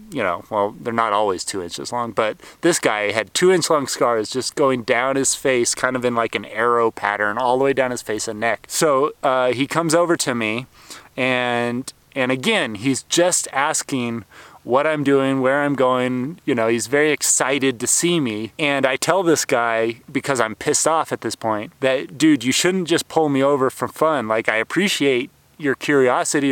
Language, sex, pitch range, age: English, male, 120-155 Hz, 30-49